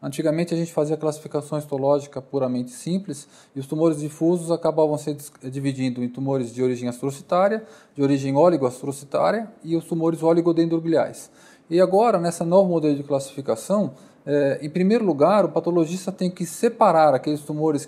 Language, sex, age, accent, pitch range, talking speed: Portuguese, male, 20-39, Brazilian, 140-190 Hz, 150 wpm